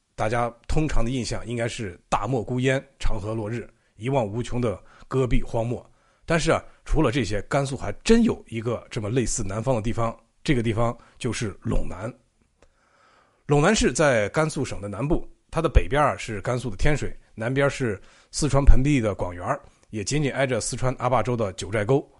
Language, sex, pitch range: Chinese, male, 110-145 Hz